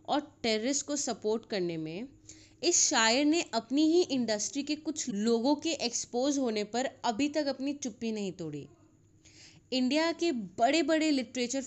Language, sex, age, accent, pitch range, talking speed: Hindi, female, 20-39, native, 205-270 Hz, 155 wpm